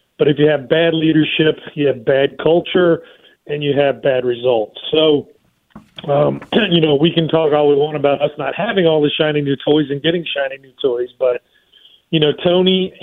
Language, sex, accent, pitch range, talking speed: English, male, American, 140-170 Hz, 200 wpm